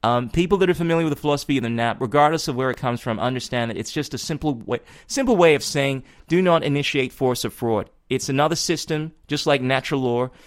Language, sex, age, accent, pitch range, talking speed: English, male, 30-49, American, 115-140 Hz, 235 wpm